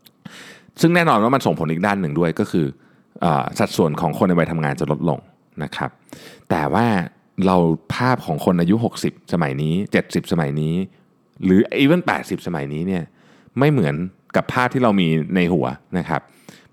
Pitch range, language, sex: 80-115 Hz, Thai, male